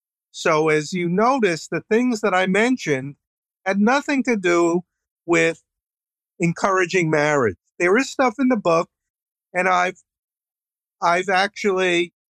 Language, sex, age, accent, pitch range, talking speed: English, male, 50-69, American, 140-190 Hz, 125 wpm